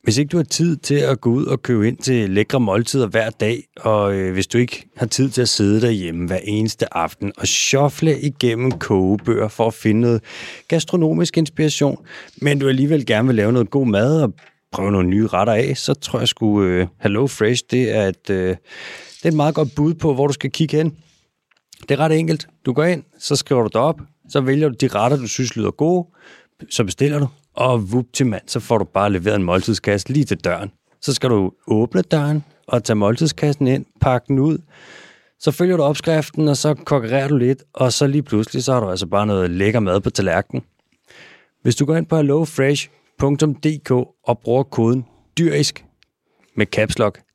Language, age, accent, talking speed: Danish, 30-49, native, 205 wpm